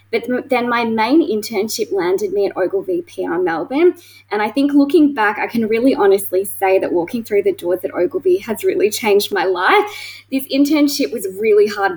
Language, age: English, 20-39